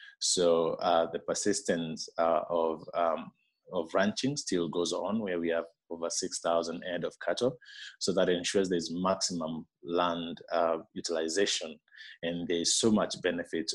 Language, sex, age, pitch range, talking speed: English, male, 30-49, 85-95 Hz, 150 wpm